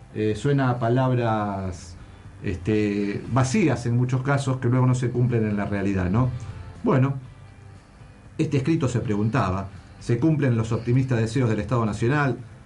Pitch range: 110-130 Hz